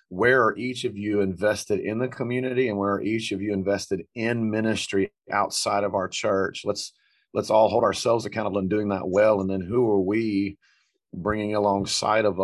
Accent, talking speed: American, 195 wpm